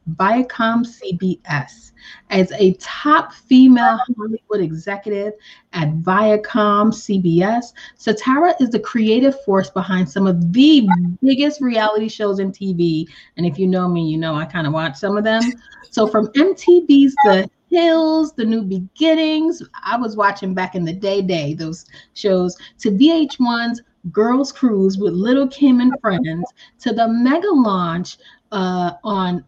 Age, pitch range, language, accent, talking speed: 30-49, 185-255 Hz, English, American, 145 wpm